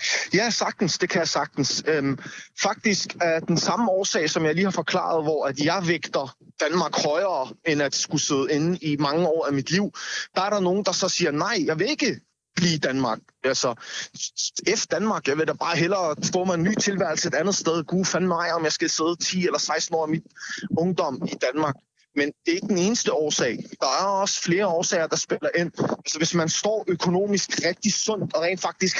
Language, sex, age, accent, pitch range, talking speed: Danish, male, 30-49, native, 160-195 Hz, 215 wpm